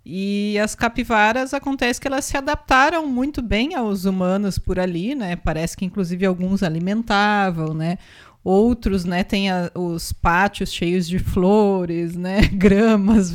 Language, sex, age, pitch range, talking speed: Portuguese, female, 30-49, 180-235 Hz, 145 wpm